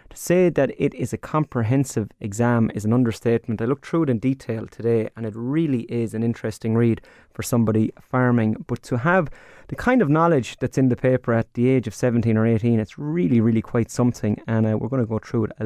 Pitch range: 110-130 Hz